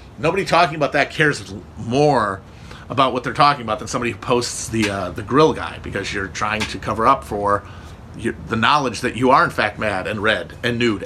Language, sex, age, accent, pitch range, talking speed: English, male, 40-59, American, 105-145 Hz, 215 wpm